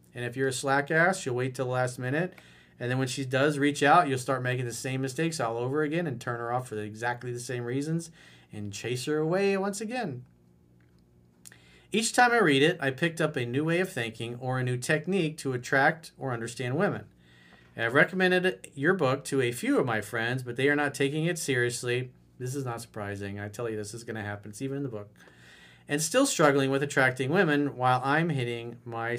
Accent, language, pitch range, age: American, English, 120-160 Hz, 40-59